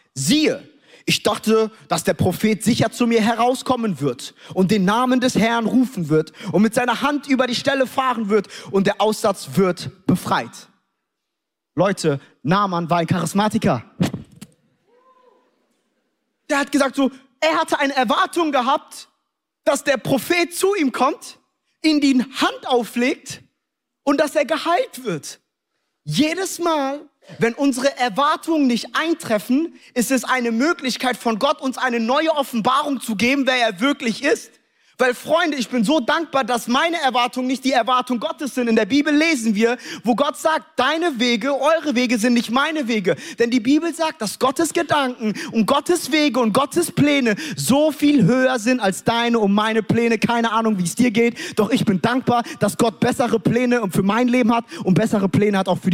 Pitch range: 220-285 Hz